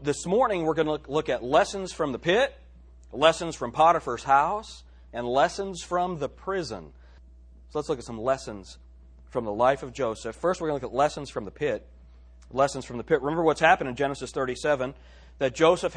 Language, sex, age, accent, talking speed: English, male, 40-59, American, 200 wpm